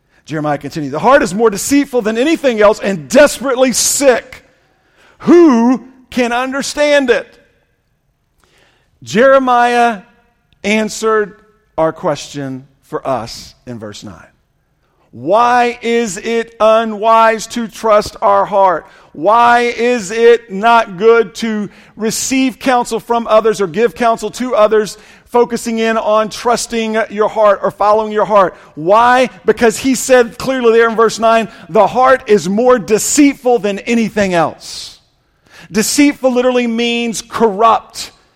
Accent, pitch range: American, 200-245 Hz